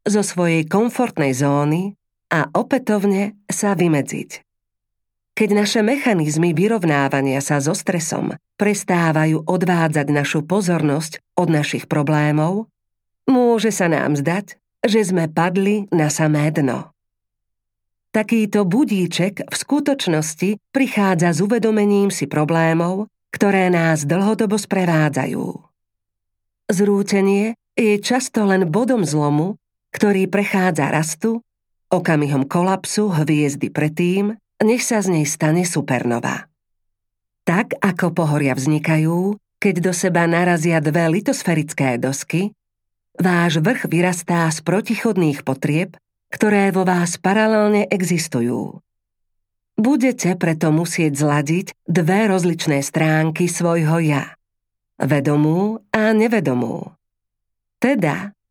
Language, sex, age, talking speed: Slovak, female, 40-59, 100 wpm